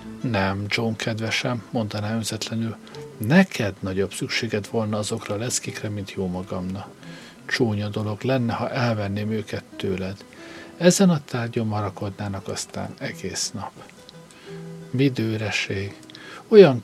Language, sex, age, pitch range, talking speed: Hungarian, male, 50-69, 105-130 Hz, 105 wpm